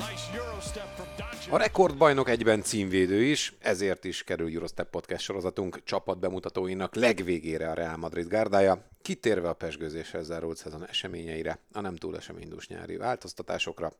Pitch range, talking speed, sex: 85-105 Hz, 130 wpm, male